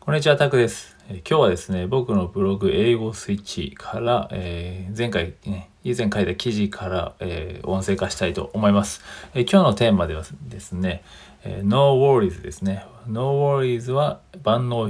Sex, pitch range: male, 90-115 Hz